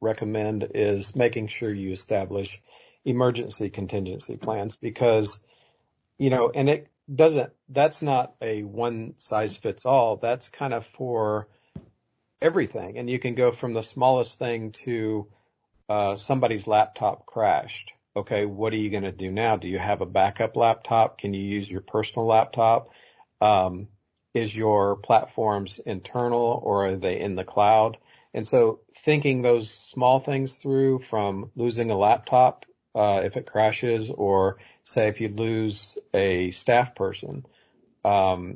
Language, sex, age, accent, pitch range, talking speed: English, male, 50-69, American, 100-125 Hz, 145 wpm